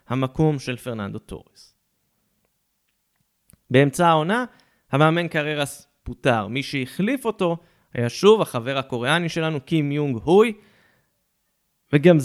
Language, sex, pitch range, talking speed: Hebrew, male, 130-185 Hz, 105 wpm